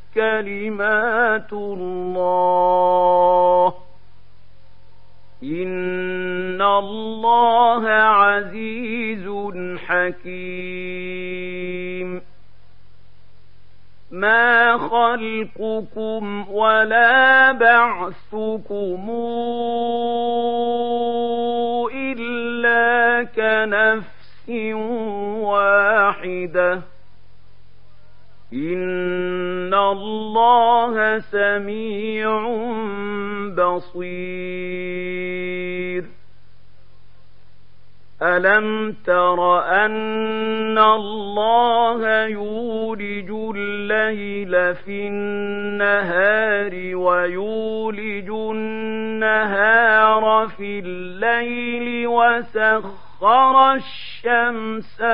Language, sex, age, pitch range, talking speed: Arabic, male, 50-69, 180-225 Hz, 35 wpm